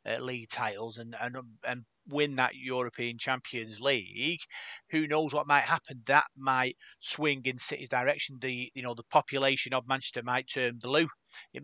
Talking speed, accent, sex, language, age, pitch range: 165 wpm, British, male, English, 30-49, 125-145 Hz